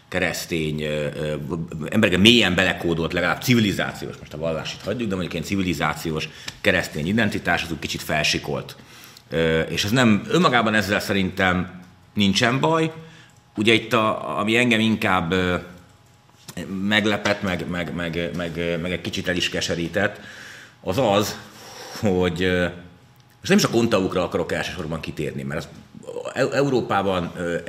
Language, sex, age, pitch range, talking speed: Hungarian, male, 30-49, 85-105 Hz, 125 wpm